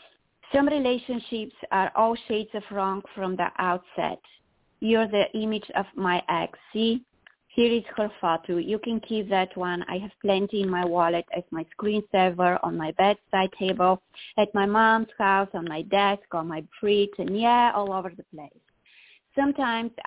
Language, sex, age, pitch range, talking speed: English, female, 20-39, 180-215 Hz, 170 wpm